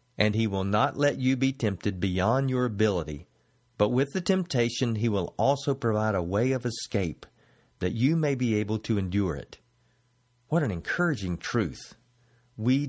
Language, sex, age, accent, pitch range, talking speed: English, male, 50-69, American, 105-135 Hz, 170 wpm